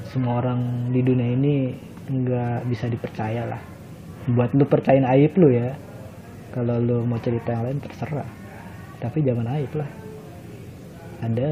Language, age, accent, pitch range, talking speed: Indonesian, 30-49, native, 115-135 Hz, 140 wpm